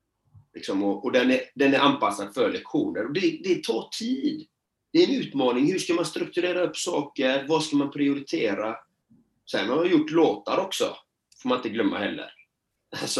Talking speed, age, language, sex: 185 wpm, 30-49, Swedish, male